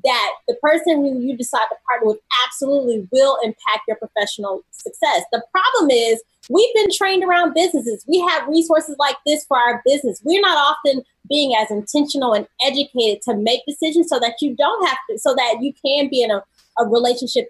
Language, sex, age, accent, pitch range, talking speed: English, female, 20-39, American, 230-300 Hz, 190 wpm